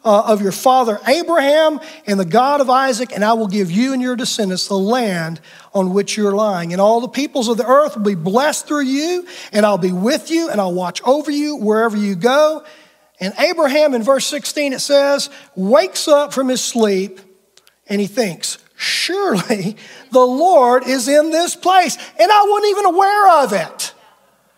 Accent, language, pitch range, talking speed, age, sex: American, English, 220-325 Hz, 190 wpm, 40-59, male